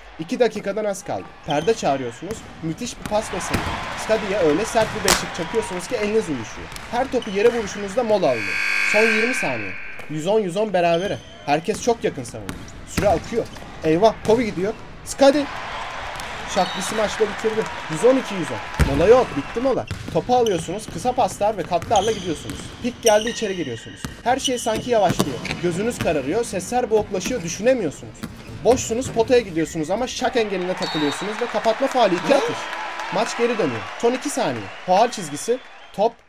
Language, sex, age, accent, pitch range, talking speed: English, male, 30-49, Turkish, 160-230 Hz, 145 wpm